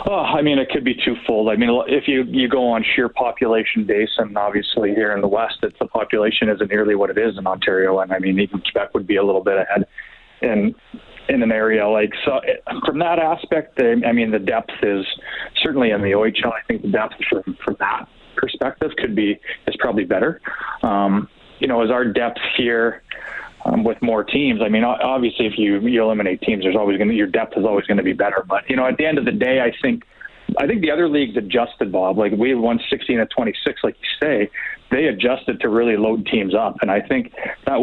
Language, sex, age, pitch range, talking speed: English, male, 30-49, 100-120 Hz, 220 wpm